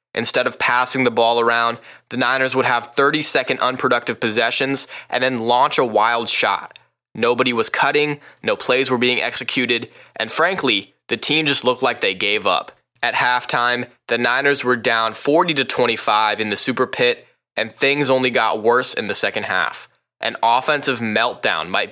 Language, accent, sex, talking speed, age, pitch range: English, American, male, 170 wpm, 20-39, 120-145 Hz